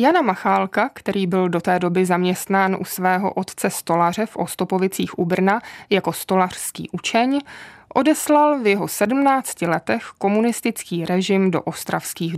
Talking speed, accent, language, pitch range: 135 wpm, native, Czech, 185-235 Hz